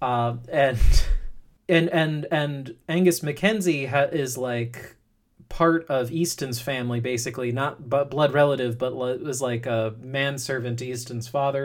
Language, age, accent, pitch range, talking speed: English, 30-49, American, 125-160 Hz, 125 wpm